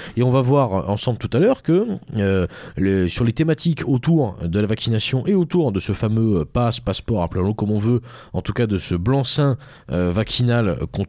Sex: male